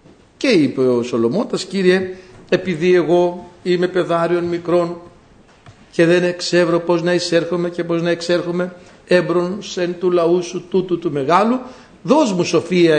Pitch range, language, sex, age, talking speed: 150-180 Hz, Greek, male, 60-79, 145 wpm